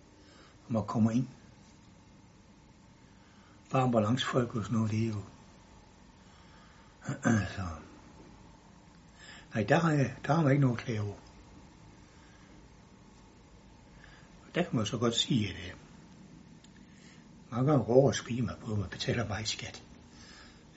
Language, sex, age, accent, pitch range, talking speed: English, male, 60-79, Danish, 85-130 Hz, 120 wpm